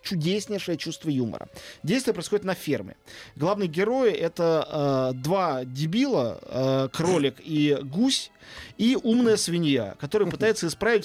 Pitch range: 145-200 Hz